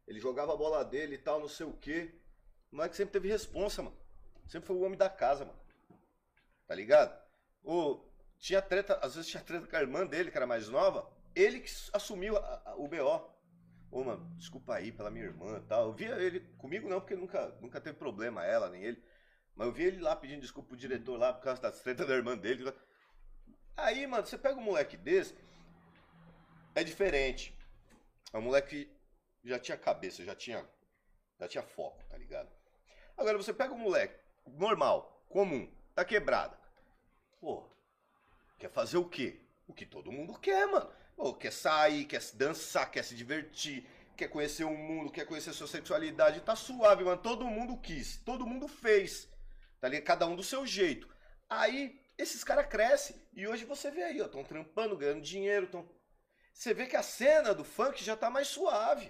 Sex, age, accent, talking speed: male, 30-49, Brazilian, 190 wpm